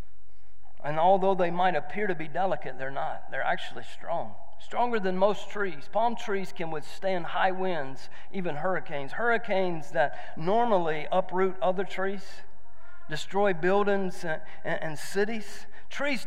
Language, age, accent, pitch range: English, 40-59, American, 165-220 Hz